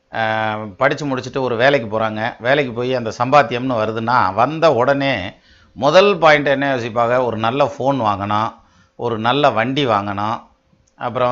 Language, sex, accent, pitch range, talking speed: Tamil, male, native, 110-140 Hz, 135 wpm